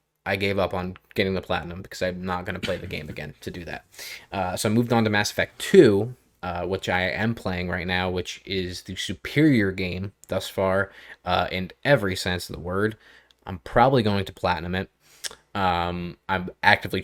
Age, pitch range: 20-39, 90-105 Hz